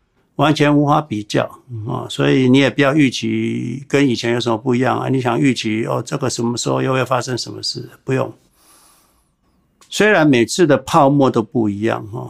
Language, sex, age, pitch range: Chinese, male, 60-79, 110-140 Hz